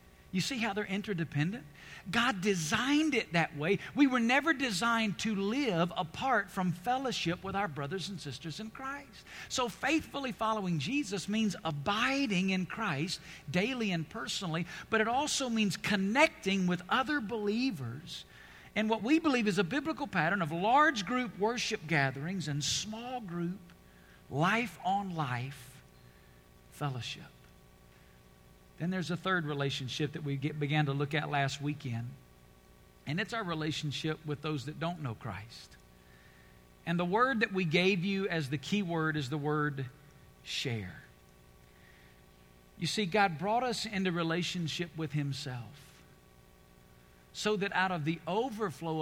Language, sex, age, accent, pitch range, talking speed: English, male, 50-69, American, 125-205 Hz, 140 wpm